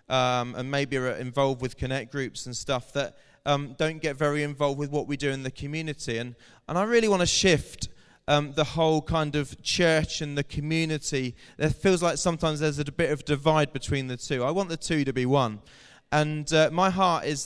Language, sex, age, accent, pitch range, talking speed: English, male, 20-39, British, 130-150 Hz, 215 wpm